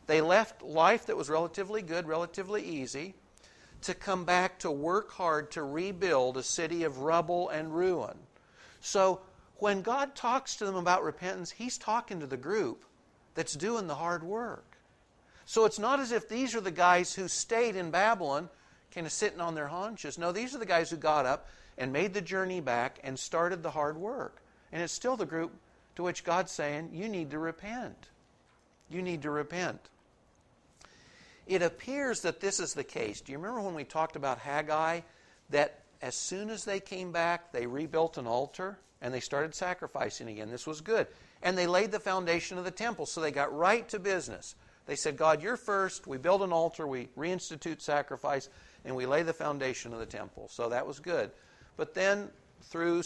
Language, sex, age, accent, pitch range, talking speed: English, male, 50-69, American, 150-195 Hz, 190 wpm